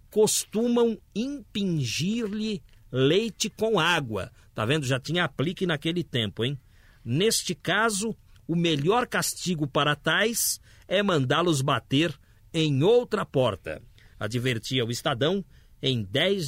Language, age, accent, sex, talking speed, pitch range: Portuguese, 50-69, Brazilian, male, 115 wpm, 130-195 Hz